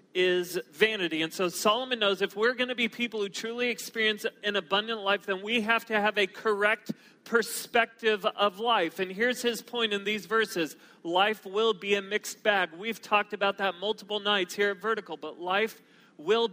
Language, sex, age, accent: English, male, 40-59, American